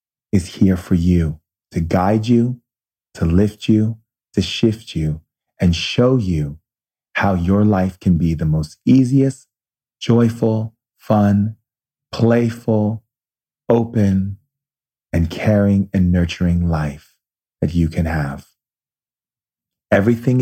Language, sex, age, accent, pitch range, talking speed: English, male, 40-59, American, 85-110 Hz, 110 wpm